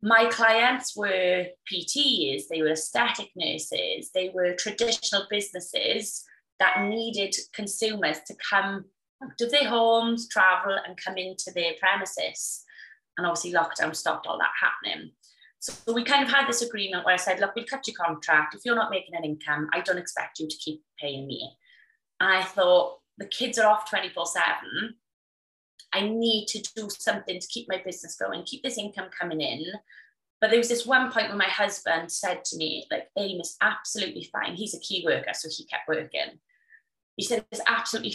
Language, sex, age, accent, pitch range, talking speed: English, female, 20-39, British, 180-230 Hz, 180 wpm